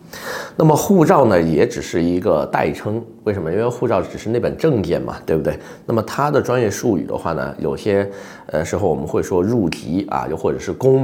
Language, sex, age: Chinese, male, 30-49